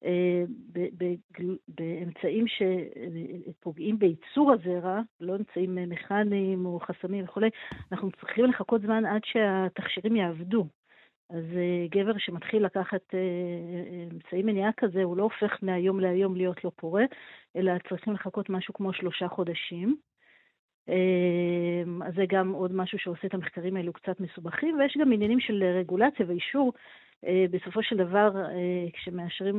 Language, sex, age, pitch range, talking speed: Hebrew, female, 50-69, 180-210 Hz, 125 wpm